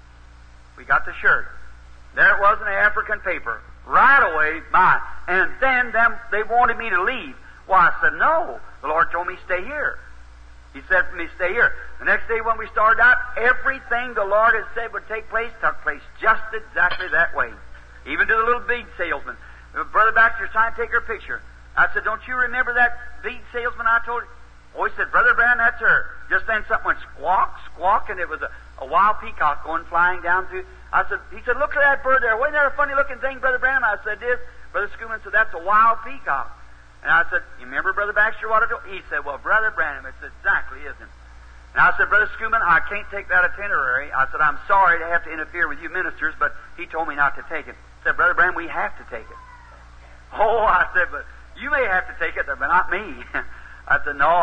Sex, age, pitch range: male, 50-69, 160-245 Hz